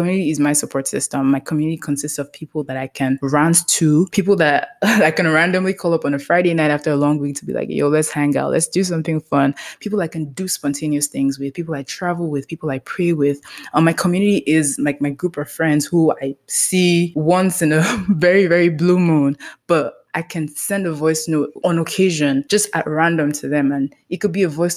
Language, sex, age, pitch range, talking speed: English, female, 20-39, 145-175 Hz, 230 wpm